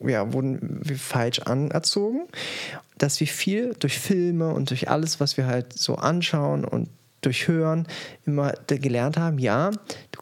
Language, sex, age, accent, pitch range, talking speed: German, male, 20-39, German, 140-175 Hz, 145 wpm